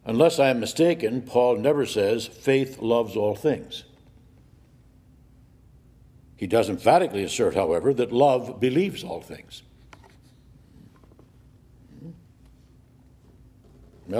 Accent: American